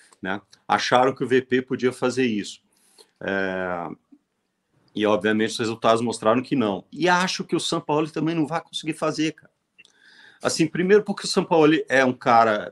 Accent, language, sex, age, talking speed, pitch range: Brazilian, Portuguese, male, 50-69, 175 wpm, 115-150 Hz